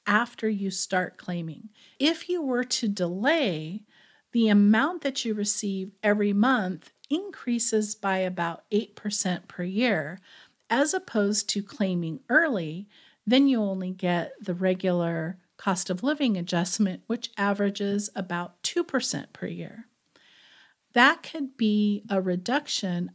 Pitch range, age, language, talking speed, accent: 195-250 Hz, 50-69, English, 125 wpm, American